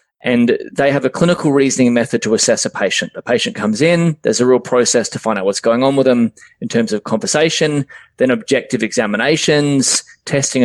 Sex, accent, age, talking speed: male, Australian, 20-39, 195 wpm